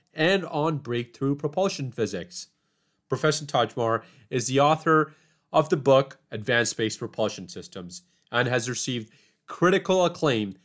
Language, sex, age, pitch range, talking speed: English, male, 30-49, 105-140 Hz, 125 wpm